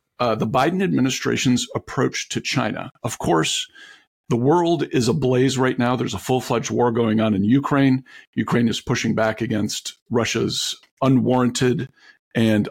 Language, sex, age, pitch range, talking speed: English, male, 50-69, 110-120 Hz, 145 wpm